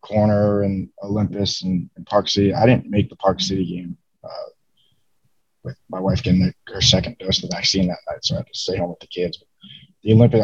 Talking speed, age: 230 wpm, 20-39